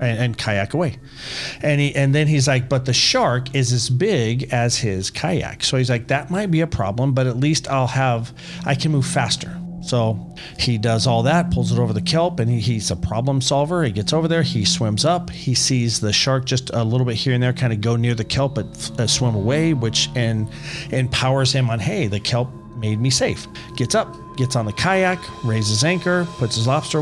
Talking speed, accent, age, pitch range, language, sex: 225 wpm, American, 40-59, 110-140 Hz, English, male